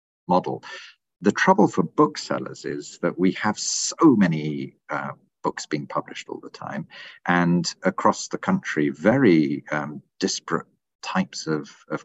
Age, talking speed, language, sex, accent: 50-69, 140 wpm, English, male, British